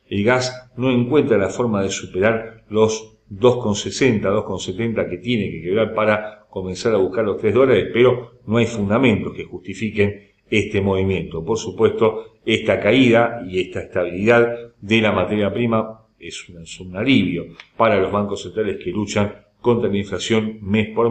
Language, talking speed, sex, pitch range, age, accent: Spanish, 160 wpm, male, 95-115 Hz, 40-59, Argentinian